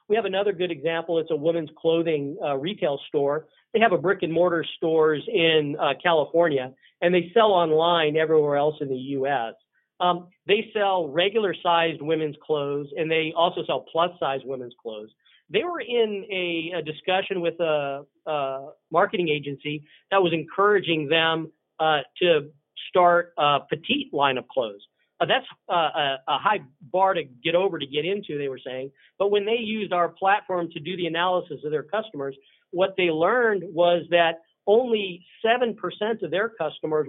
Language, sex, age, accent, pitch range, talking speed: English, male, 50-69, American, 150-190 Hz, 175 wpm